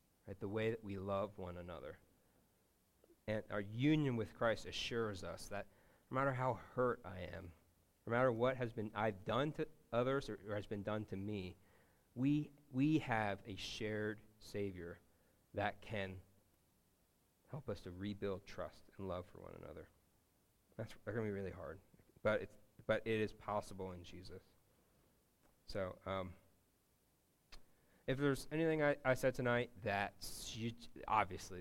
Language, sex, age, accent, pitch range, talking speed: English, male, 40-59, American, 95-115 Hz, 155 wpm